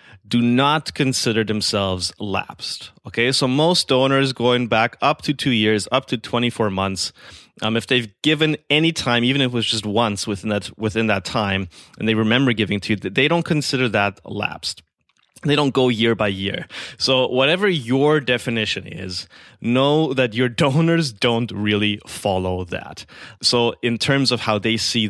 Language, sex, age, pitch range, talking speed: English, male, 20-39, 105-130 Hz, 175 wpm